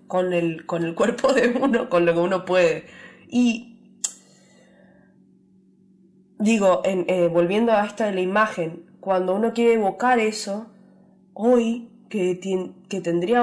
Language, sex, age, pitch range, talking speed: Spanish, female, 20-39, 180-220 Hz, 145 wpm